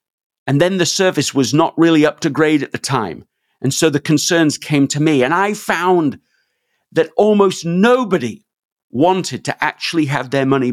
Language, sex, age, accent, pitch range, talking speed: English, male, 50-69, British, 125-165 Hz, 180 wpm